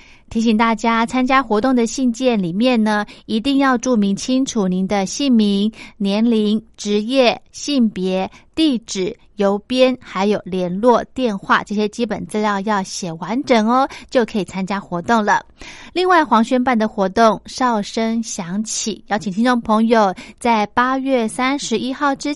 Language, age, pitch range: Chinese, 20-39, 205-255 Hz